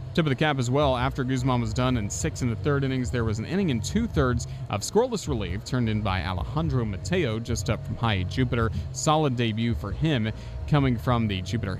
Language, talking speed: English, 220 wpm